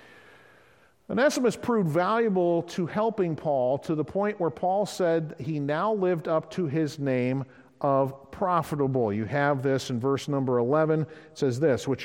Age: 50-69